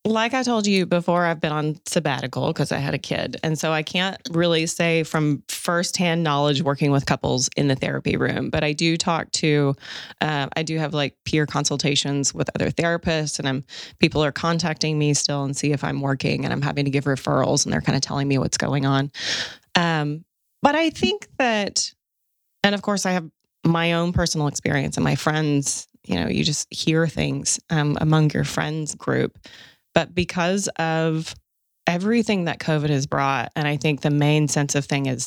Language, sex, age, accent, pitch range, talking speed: English, female, 30-49, American, 140-170 Hz, 200 wpm